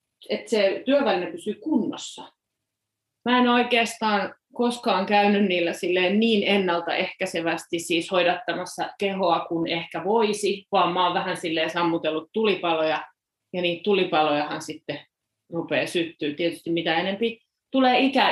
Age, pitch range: 30-49, 165-205 Hz